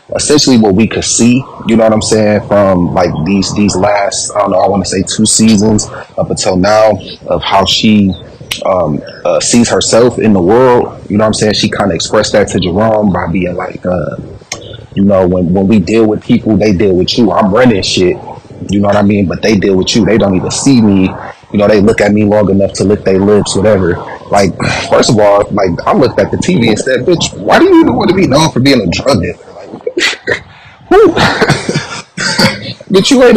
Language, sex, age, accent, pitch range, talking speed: English, male, 30-49, American, 95-115 Hz, 225 wpm